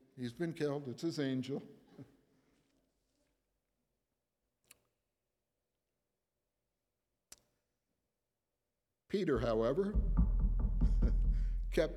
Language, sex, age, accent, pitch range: English, male, 60-79, American, 120-170 Hz